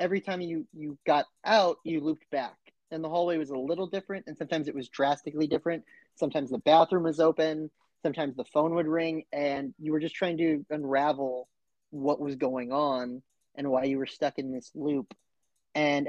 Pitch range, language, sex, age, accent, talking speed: 135-165 Hz, English, male, 30-49, American, 195 wpm